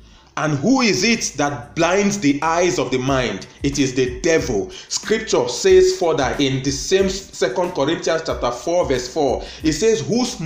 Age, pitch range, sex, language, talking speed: 30-49, 145-210 Hz, male, English, 170 wpm